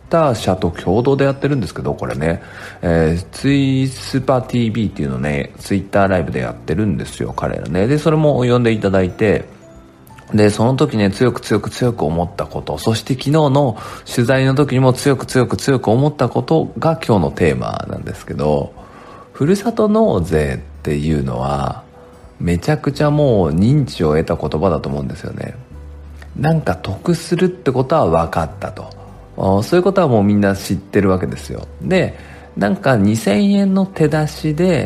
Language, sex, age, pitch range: Japanese, male, 40-59, 85-140 Hz